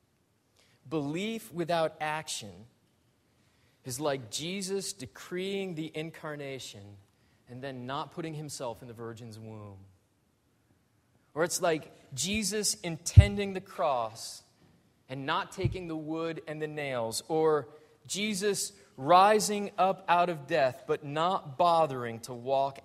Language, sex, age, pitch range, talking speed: English, male, 30-49, 120-175 Hz, 120 wpm